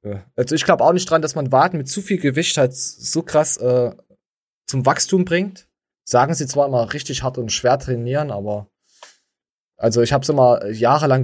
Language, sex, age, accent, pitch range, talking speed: German, male, 20-39, German, 120-150 Hz, 190 wpm